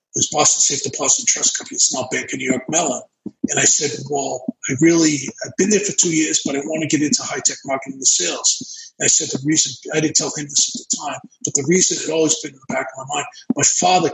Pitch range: 145-205 Hz